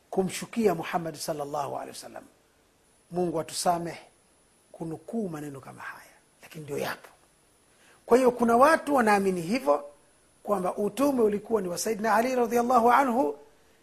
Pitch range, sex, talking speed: 185-245 Hz, male, 125 wpm